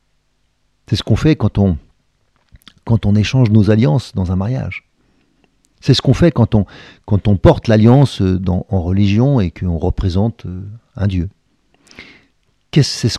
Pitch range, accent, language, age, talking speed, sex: 95-125 Hz, French, French, 50-69, 145 wpm, male